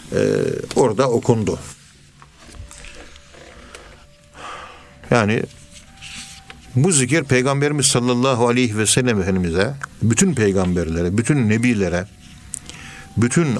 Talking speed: 75 wpm